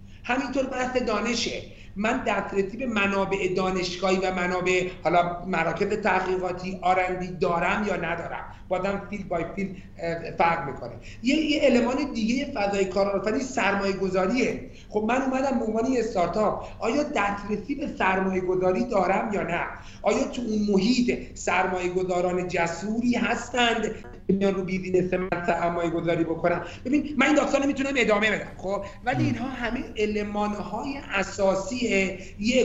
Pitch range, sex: 185-240 Hz, male